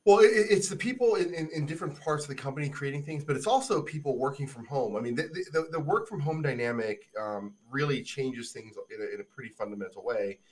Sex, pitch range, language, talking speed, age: male, 125-180 Hz, English, 235 wpm, 20-39